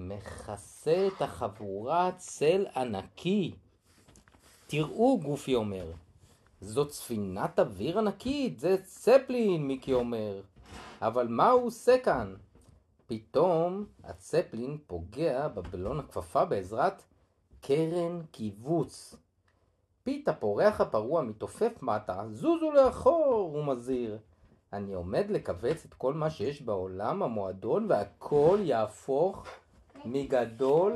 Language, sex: Hebrew, male